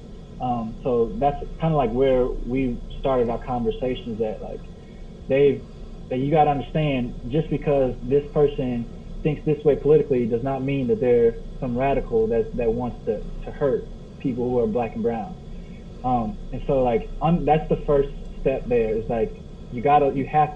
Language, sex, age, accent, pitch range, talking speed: English, male, 20-39, American, 130-160 Hz, 185 wpm